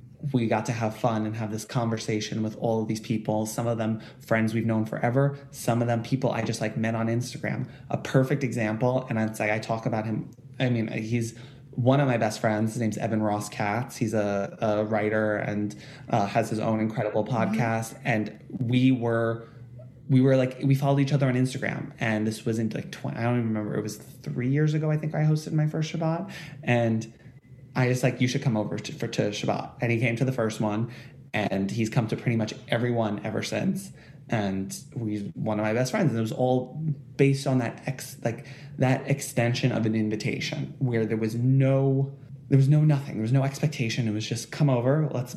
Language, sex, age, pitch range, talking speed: English, male, 20-39, 110-135 Hz, 220 wpm